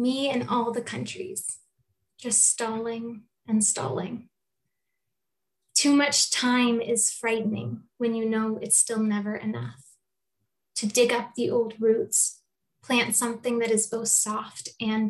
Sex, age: female, 20-39